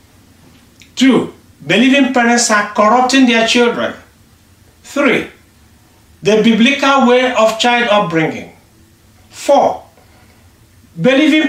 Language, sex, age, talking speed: English, male, 60-79, 85 wpm